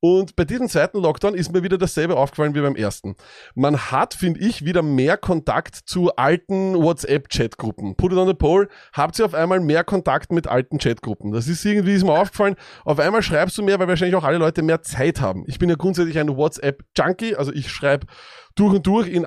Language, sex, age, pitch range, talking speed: German, male, 30-49, 145-190 Hz, 215 wpm